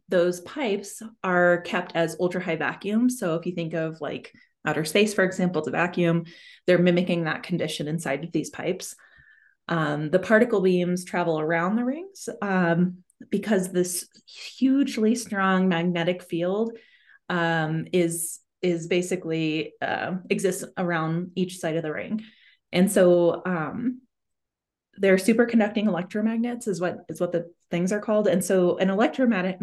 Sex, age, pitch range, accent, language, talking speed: female, 20-39, 170-205 Hz, American, English, 150 wpm